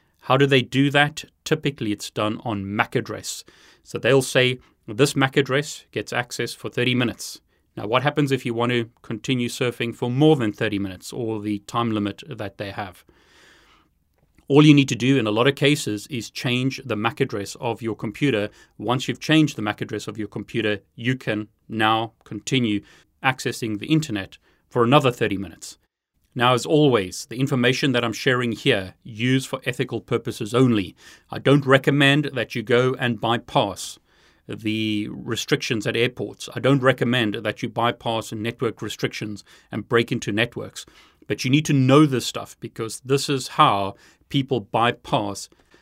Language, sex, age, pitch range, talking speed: English, male, 30-49, 105-135 Hz, 175 wpm